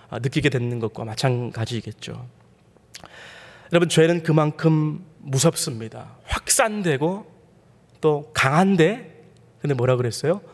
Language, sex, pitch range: Korean, male, 125-170 Hz